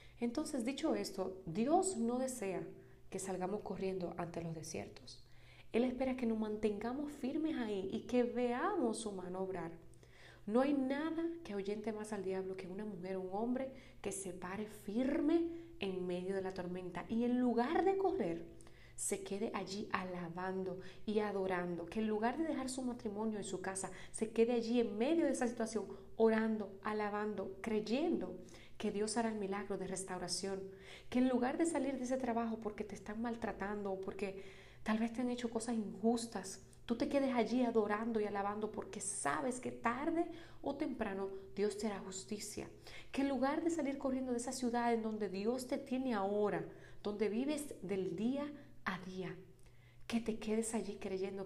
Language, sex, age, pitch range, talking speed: Spanish, female, 30-49, 190-245 Hz, 175 wpm